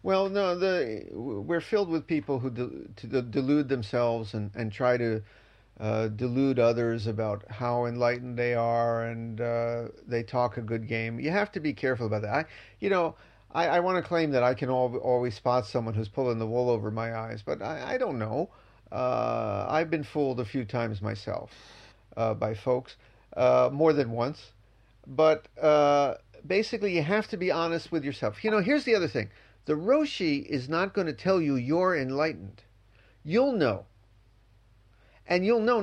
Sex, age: male, 40-59